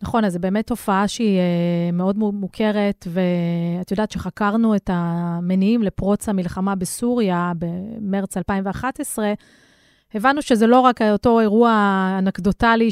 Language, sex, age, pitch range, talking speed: Hebrew, female, 30-49, 185-215 Hz, 115 wpm